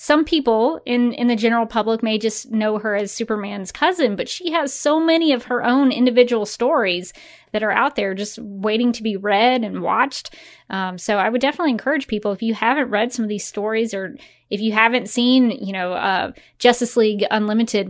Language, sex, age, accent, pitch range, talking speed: English, female, 20-39, American, 195-235 Hz, 205 wpm